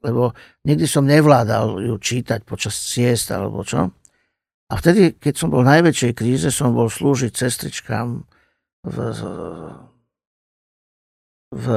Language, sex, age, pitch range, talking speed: Slovak, male, 50-69, 110-140 Hz, 125 wpm